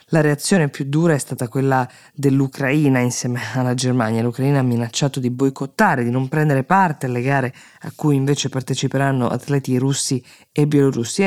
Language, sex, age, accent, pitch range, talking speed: Italian, female, 20-39, native, 125-150 Hz, 160 wpm